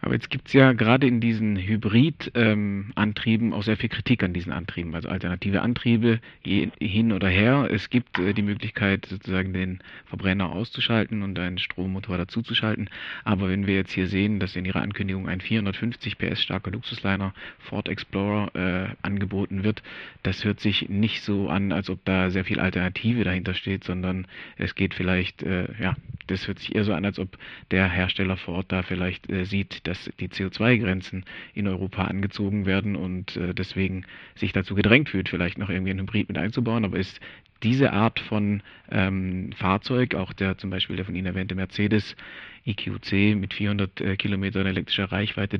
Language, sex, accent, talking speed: German, male, German, 180 wpm